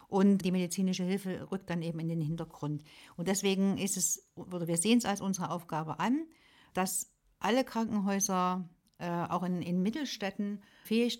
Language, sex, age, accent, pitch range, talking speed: German, female, 60-79, German, 175-205 Hz, 165 wpm